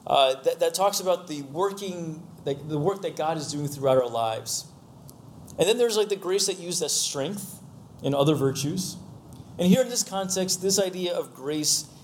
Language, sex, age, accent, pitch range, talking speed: English, male, 30-49, American, 140-190 Hz, 195 wpm